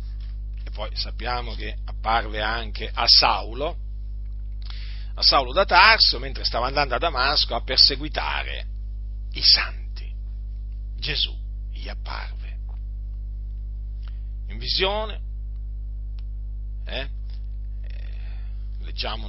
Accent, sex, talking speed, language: native, male, 85 wpm, Italian